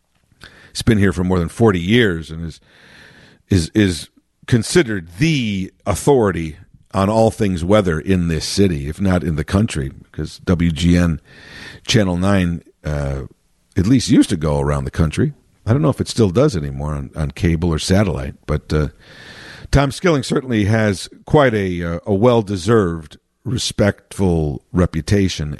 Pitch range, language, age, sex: 80-115 Hz, English, 50-69, male